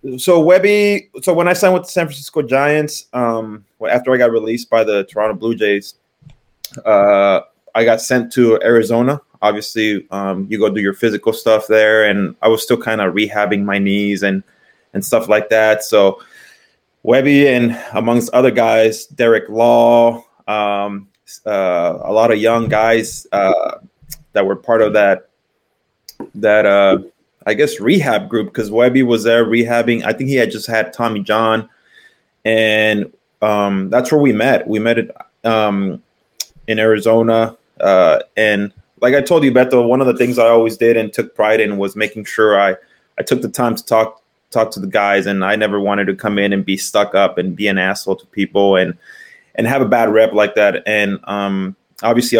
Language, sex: English, male